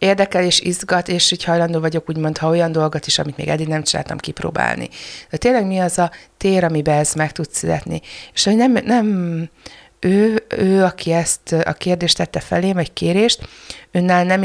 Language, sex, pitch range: Hungarian, female, 160-190 Hz